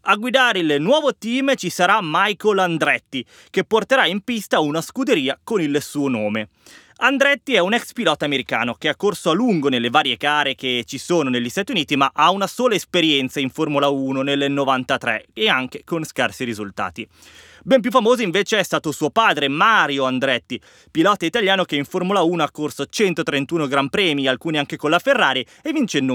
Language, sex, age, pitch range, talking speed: Italian, male, 20-39, 140-210 Hz, 190 wpm